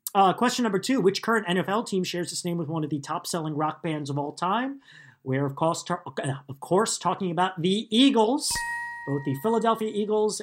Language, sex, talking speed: English, male, 195 wpm